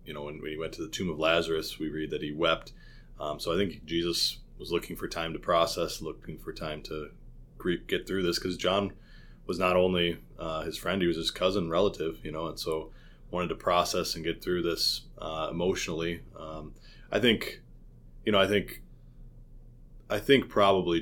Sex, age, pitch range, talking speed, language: male, 20-39, 80-90 Hz, 195 wpm, English